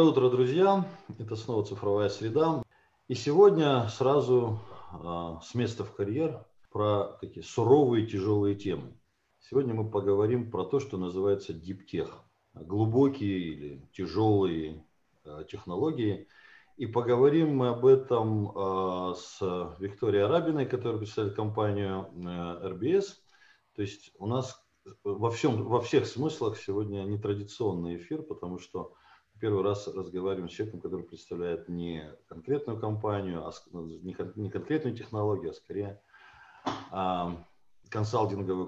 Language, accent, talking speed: Russian, native, 125 wpm